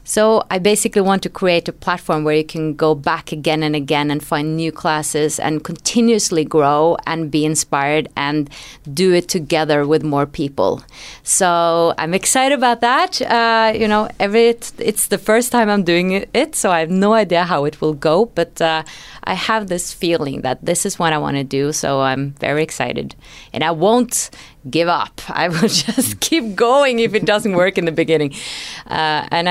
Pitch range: 155-205 Hz